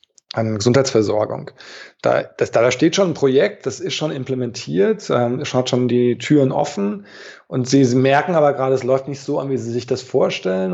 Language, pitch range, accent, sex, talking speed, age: German, 120-135 Hz, German, male, 205 wpm, 20-39